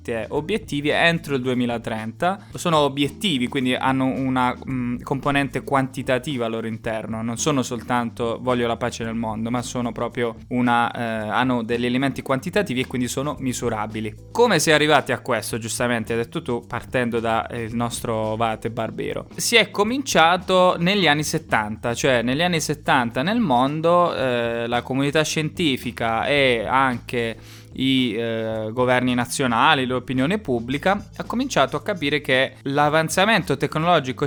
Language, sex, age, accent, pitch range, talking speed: Italian, male, 20-39, native, 120-150 Hz, 145 wpm